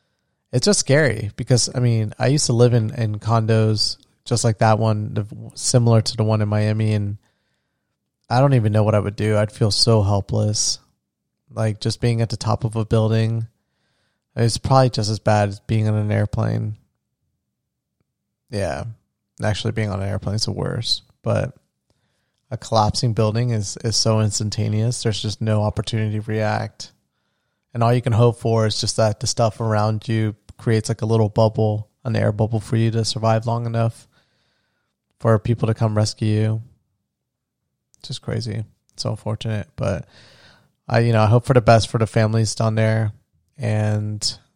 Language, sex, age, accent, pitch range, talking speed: English, male, 20-39, American, 105-120 Hz, 180 wpm